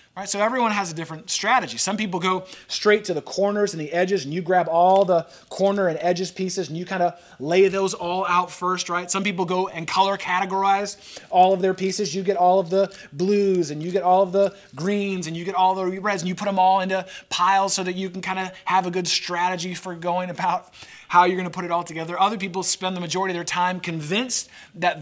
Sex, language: male, English